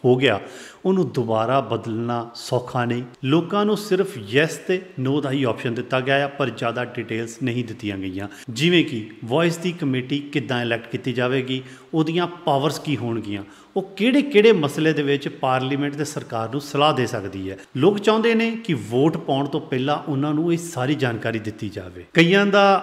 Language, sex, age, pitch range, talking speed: Punjabi, male, 30-49, 120-155 Hz, 180 wpm